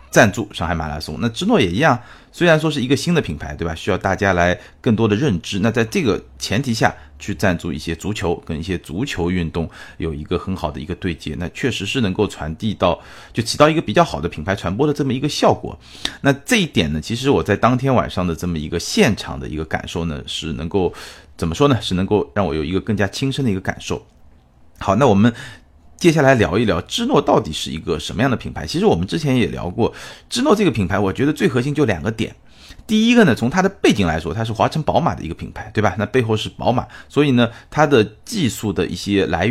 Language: Chinese